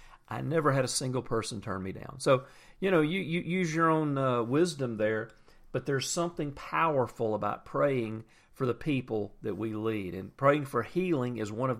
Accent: American